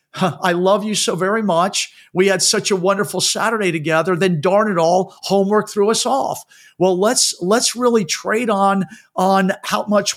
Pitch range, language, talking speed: 175-205 Hz, English, 175 wpm